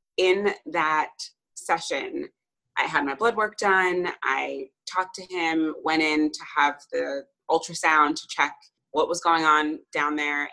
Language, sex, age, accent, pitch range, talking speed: English, female, 20-39, American, 150-230 Hz, 155 wpm